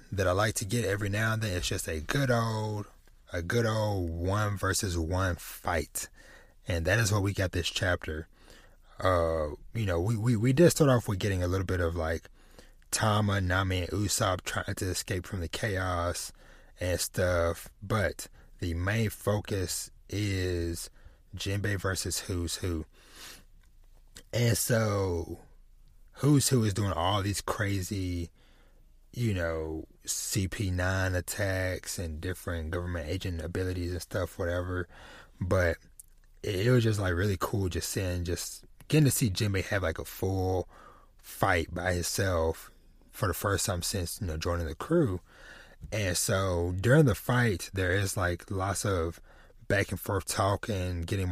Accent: American